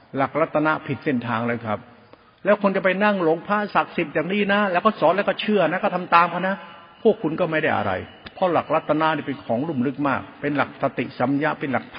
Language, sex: Thai, male